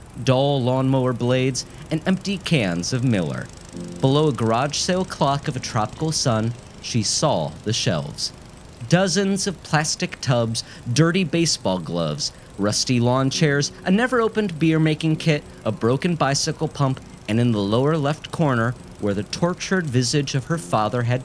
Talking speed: 150 wpm